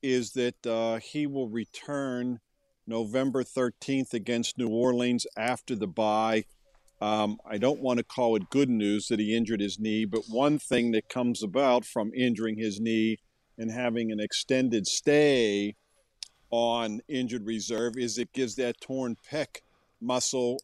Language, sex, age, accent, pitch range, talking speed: English, male, 50-69, American, 115-130 Hz, 155 wpm